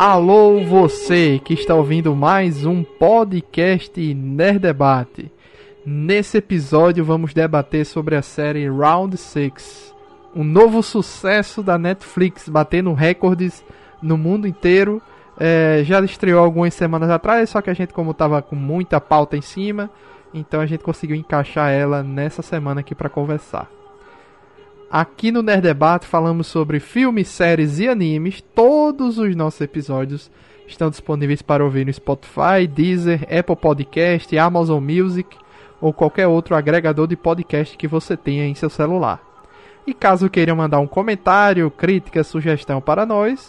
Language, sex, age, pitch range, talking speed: Portuguese, male, 20-39, 155-195 Hz, 145 wpm